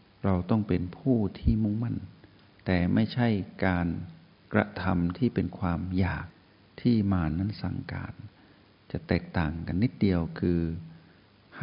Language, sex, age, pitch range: Thai, male, 60-79, 90-110 Hz